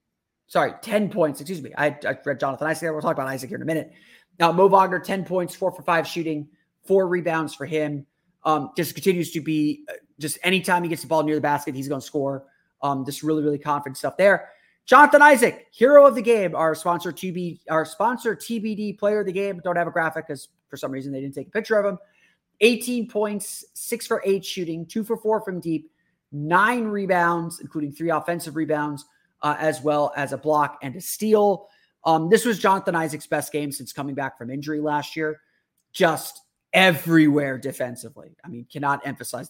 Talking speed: 200 wpm